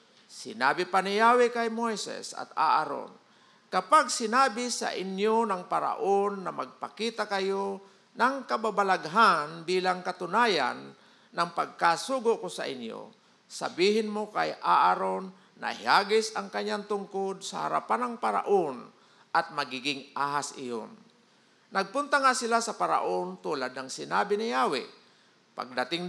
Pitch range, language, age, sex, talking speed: 155-225 Hz, Filipino, 50-69, male, 125 wpm